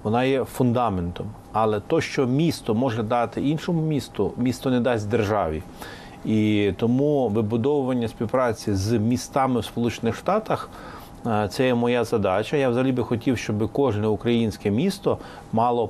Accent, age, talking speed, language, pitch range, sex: native, 30-49, 145 wpm, Ukrainian, 105-125 Hz, male